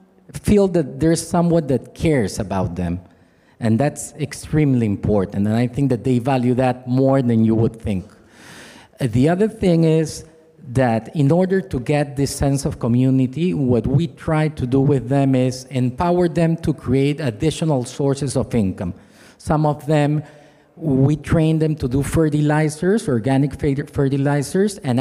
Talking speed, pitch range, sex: 155 wpm, 125-160 Hz, male